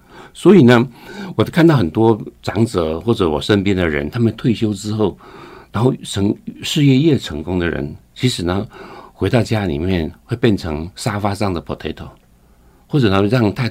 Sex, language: male, Chinese